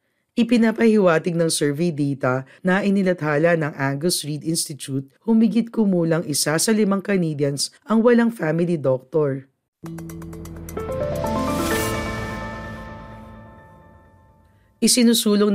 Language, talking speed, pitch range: Filipino, 80 wpm, 140-195 Hz